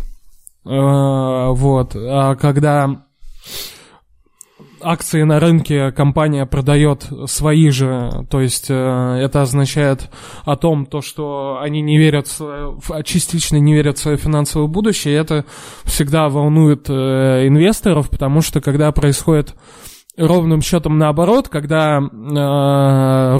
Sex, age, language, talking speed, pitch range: male, 20-39, Russian, 110 wpm, 140-160 Hz